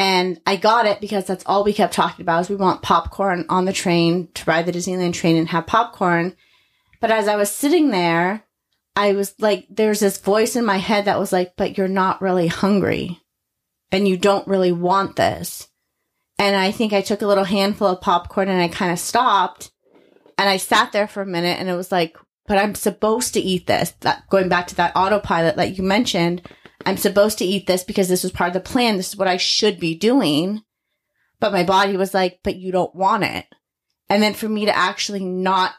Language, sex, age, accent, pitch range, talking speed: English, female, 30-49, American, 185-225 Hz, 220 wpm